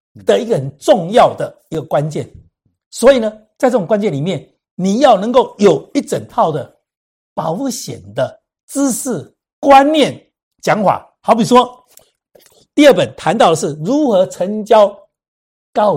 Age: 60-79